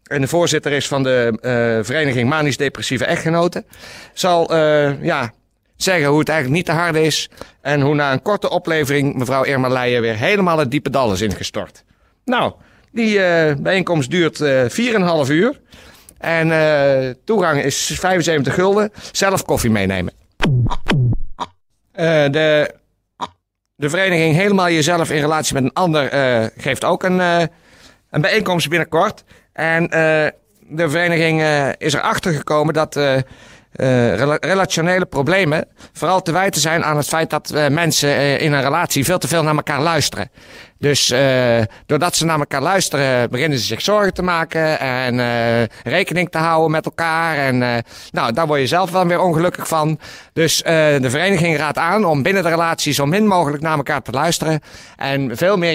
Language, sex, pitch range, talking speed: Dutch, male, 130-165 Hz, 170 wpm